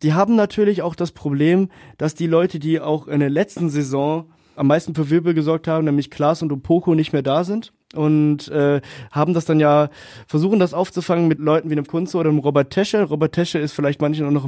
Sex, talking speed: male, 225 wpm